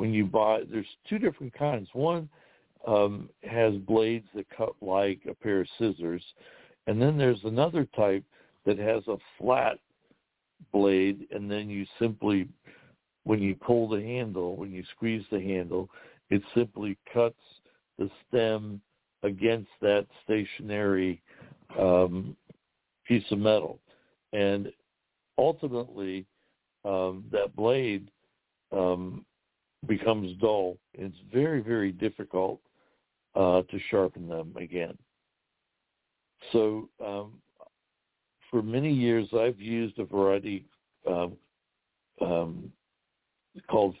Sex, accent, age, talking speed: male, American, 60-79, 115 wpm